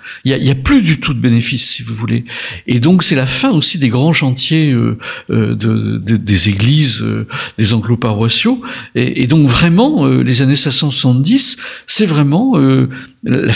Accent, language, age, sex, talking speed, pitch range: French, French, 60-79, male, 185 wpm, 115-180 Hz